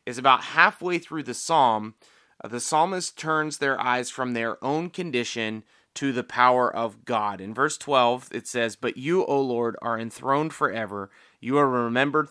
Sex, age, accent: male, 30-49, American